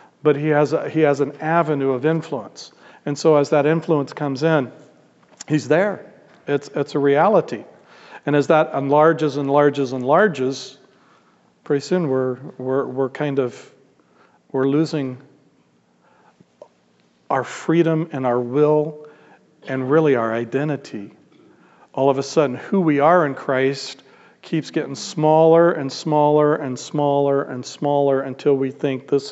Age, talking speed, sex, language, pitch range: 50-69, 145 wpm, male, English, 130-155 Hz